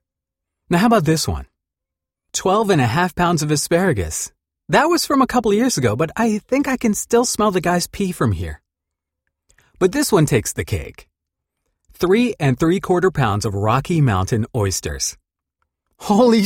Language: English